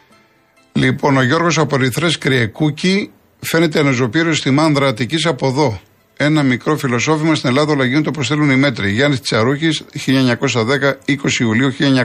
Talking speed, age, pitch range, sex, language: 135 wpm, 50-69, 110-145 Hz, male, Greek